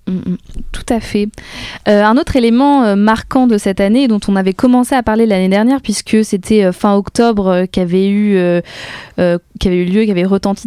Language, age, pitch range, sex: French, 20-39, 180-215 Hz, female